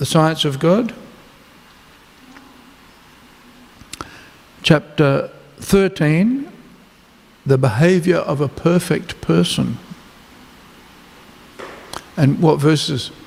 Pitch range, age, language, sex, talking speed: 135-175 Hz, 60-79, English, male, 70 wpm